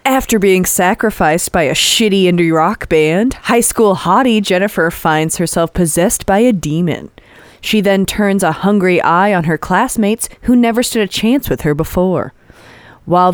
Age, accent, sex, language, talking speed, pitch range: 20-39, American, female, English, 165 wpm, 160-205 Hz